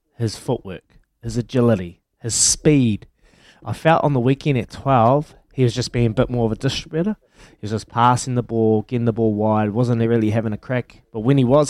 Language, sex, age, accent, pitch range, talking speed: English, male, 20-39, Australian, 115-145 Hz, 215 wpm